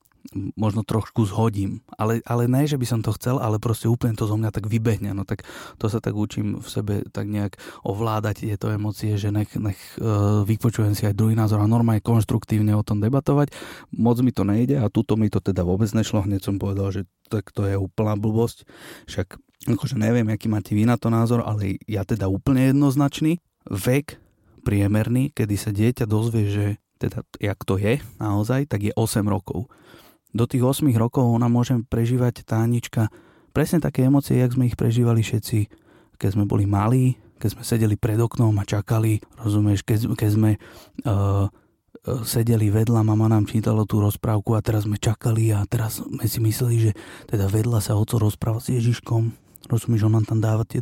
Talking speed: 185 wpm